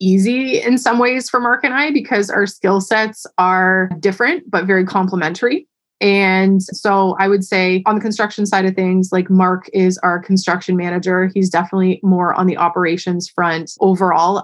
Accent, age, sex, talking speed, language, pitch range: American, 20-39, female, 175 wpm, English, 180-215 Hz